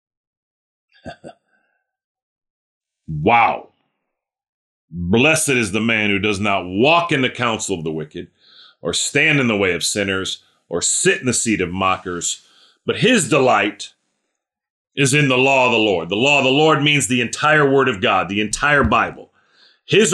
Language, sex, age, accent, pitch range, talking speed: English, male, 40-59, American, 105-145 Hz, 160 wpm